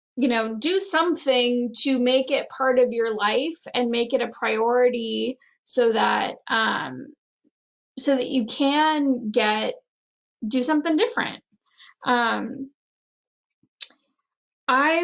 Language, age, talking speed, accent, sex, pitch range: English, 10-29, 115 wpm, American, female, 235-275 Hz